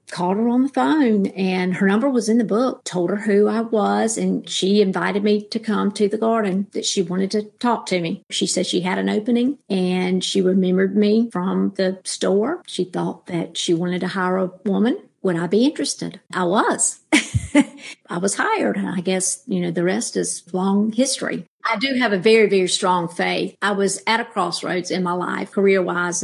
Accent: American